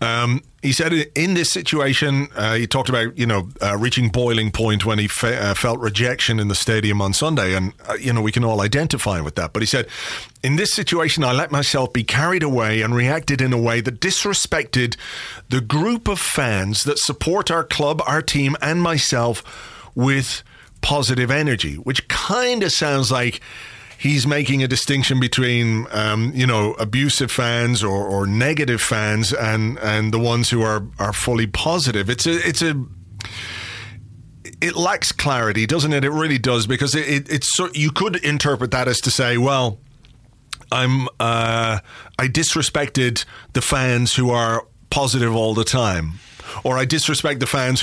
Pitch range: 115-145 Hz